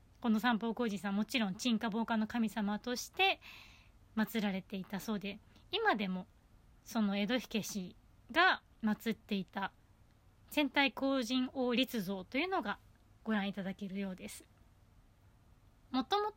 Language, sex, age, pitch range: Japanese, female, 20-39, 195-295 Hz